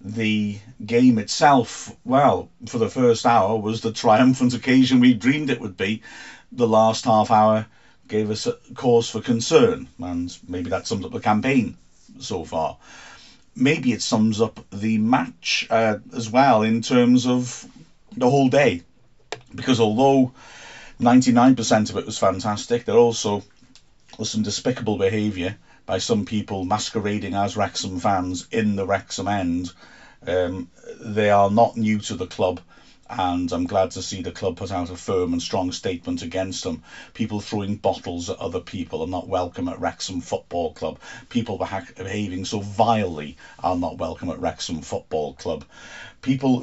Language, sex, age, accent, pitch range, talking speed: English, male, 50-69, British, 95-120 Hz, 160 wpm